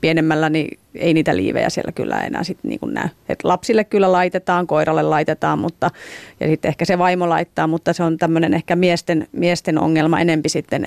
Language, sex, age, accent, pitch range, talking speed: Finnish, female, 30-49, native, 155-175 Hz, 190 wpm